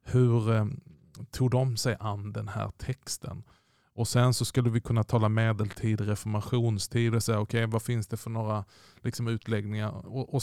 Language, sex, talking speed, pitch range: Swedish, male, 180 wpm, 110-130 Hz